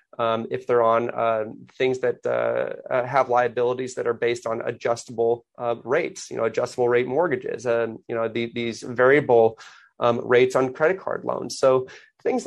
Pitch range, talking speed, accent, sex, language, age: 120-140 Hz, 180 wpm, American, male, English, 30-49